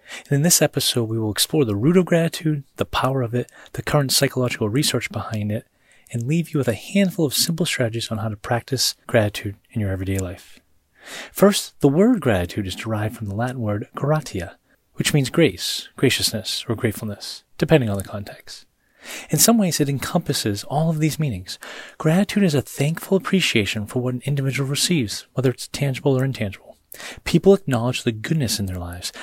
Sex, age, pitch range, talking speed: male, 30-49, 110-145 Hz, 185 wpm